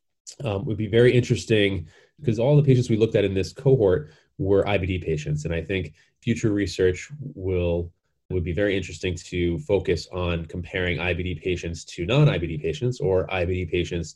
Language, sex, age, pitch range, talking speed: English, male, 20-39, 80-100 Hz, 170 wpm